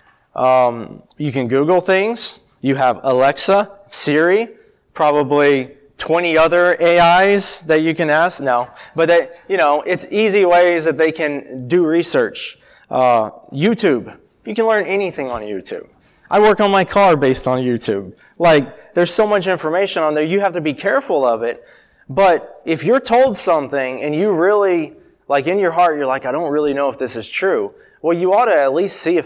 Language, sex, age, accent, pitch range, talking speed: English, male, 20-39, American, 135-185 Hz, 185 wpm